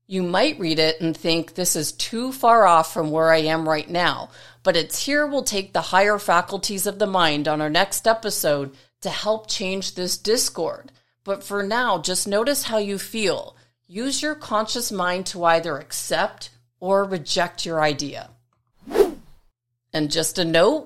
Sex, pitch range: female, 165-225 Hz